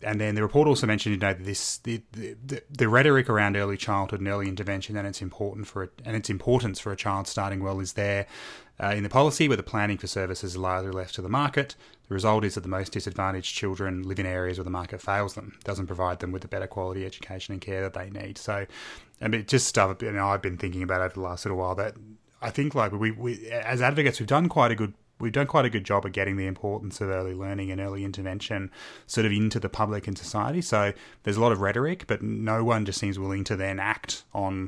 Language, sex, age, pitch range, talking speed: English, male, 20-39, 95-110 Hz, 260 wpm